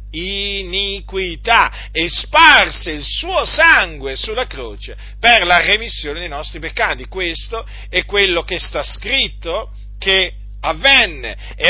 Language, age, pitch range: Italian, 50-69, 150-245 Hz